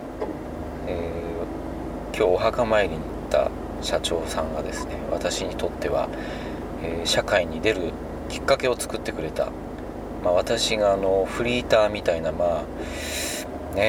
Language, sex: Japanese, male